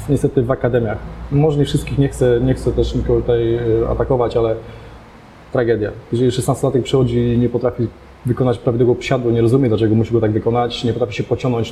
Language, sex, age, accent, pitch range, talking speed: Polish, male, 20-39, native, 120-145 Hz, 190 wpm